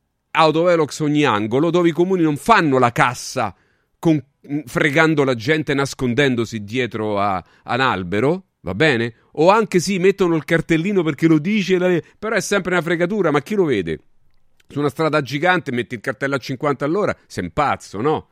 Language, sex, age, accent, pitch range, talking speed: Italian, male, 40-59, native, 115-175 Hz, 175 wpm